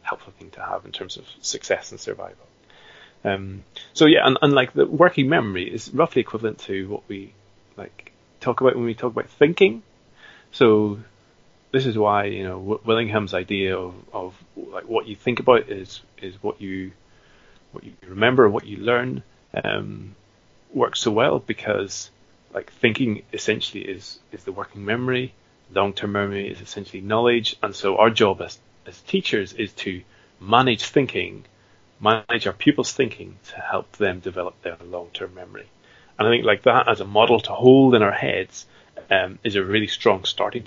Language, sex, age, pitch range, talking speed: English, male, 30-49, 100-120 Hz, 175 wpm